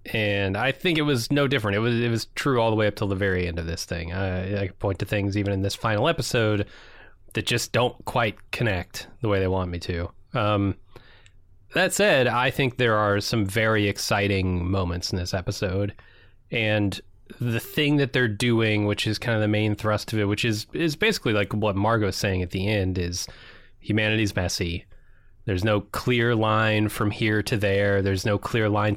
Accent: American